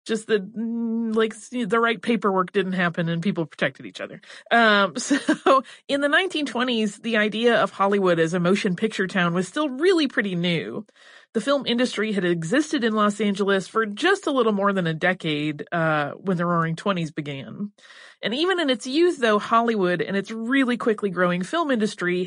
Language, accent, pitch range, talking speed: English, American, 180-230 Hz, 185 wpm